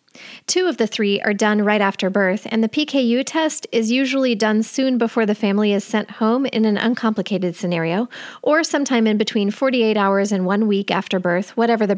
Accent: American